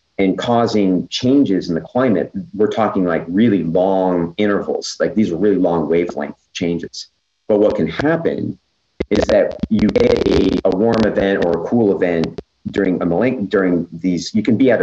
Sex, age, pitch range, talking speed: male, 40-59, 90-105 Hz, 180 wpm